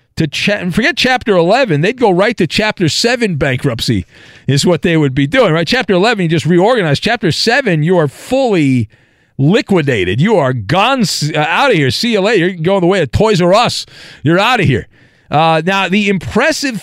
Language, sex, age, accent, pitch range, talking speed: English, male, 50-69, American, 120-190 Hz, 195 wpm